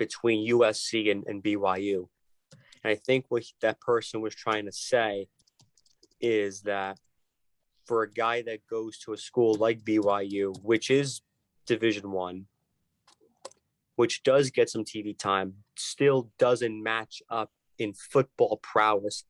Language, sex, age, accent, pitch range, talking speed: English, male, 30-49, American, 110-125 Hz, 135 wpm